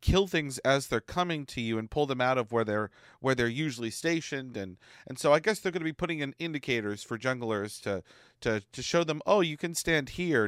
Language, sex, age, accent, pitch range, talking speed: English, male, 40-59, American, 120-170 Hz, 235 wpm